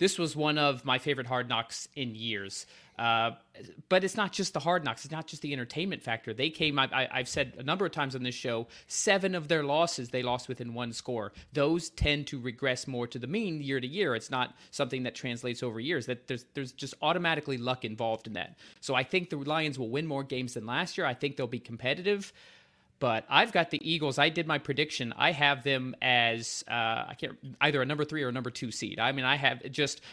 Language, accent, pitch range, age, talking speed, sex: English, American, 125-160 Hz, 30-49, 240 wpm, male